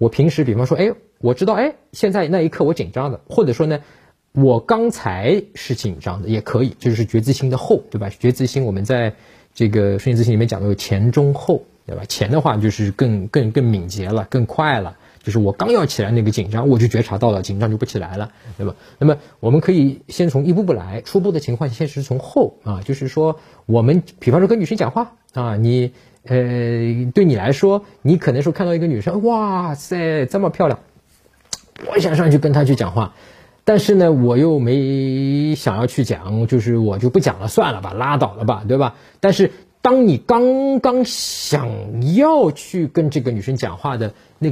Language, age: Chinese, 20-39